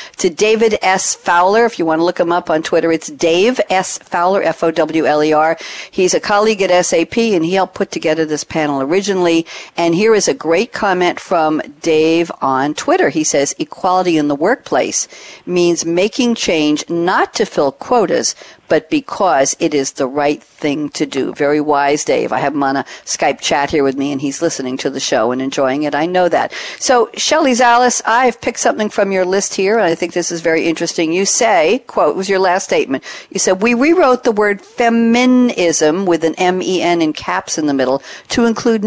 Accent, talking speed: American, 200 wpm